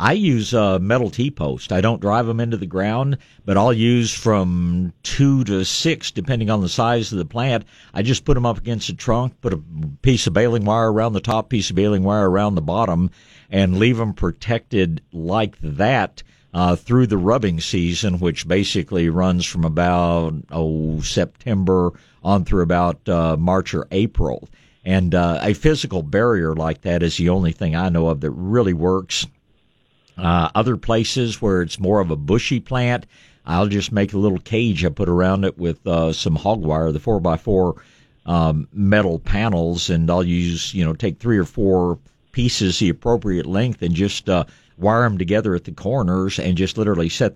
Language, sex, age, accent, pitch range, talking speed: English, male, 50-69, American, 85-110 Hz, 190 wpm